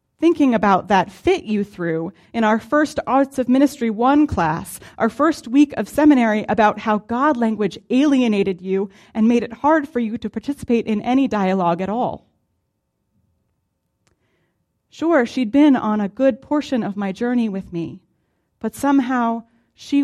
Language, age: English, 30-49